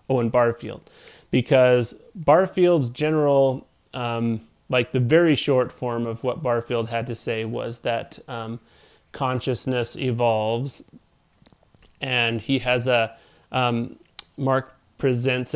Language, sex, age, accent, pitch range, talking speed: English, male, 30-49, American, 120-140 Hz, 110 wpm